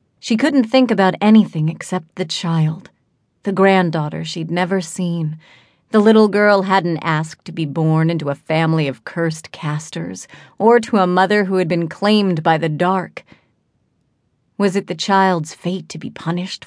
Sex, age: female, 40-59